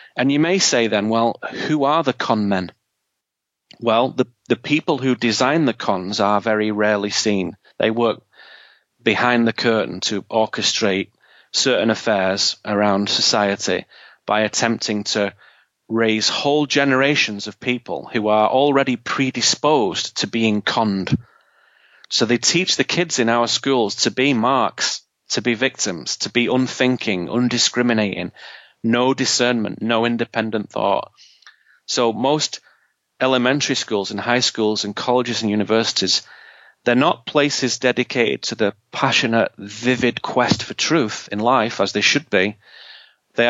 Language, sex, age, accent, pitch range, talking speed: English, male, 30-49, British, 105-130 Hz, 140 wpm